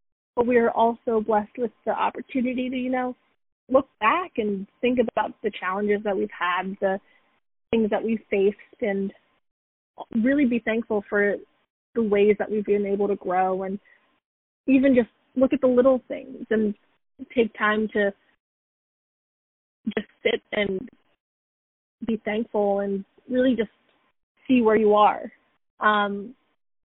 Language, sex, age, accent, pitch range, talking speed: English, female, 30-49, American, 205-245 Hz, 140 wpm